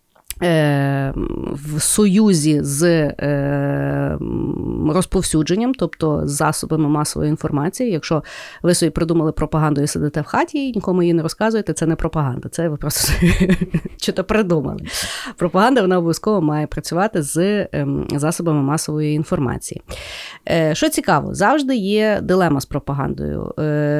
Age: 30-49